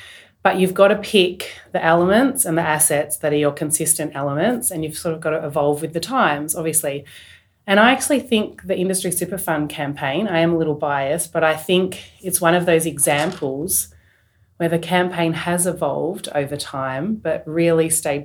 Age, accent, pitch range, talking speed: 30-49, Australian, 150-175 Hz, 185 wpm